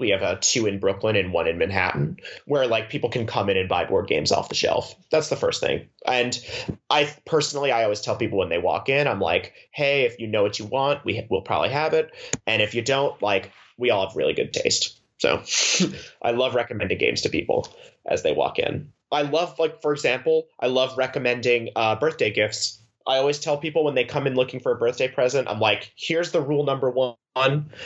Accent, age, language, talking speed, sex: American, 30-49, English, 225 wpm, male